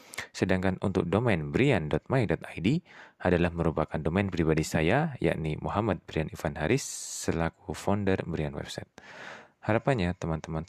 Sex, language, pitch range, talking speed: male, Indonesian, 85-110 Hz, 110 wpm